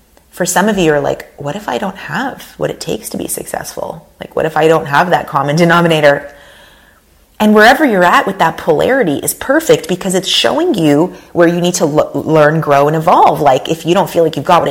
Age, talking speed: 30-49, 235 wpm